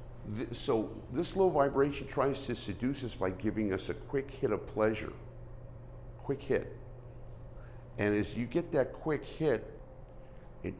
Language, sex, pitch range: English, male, 105-130 Hz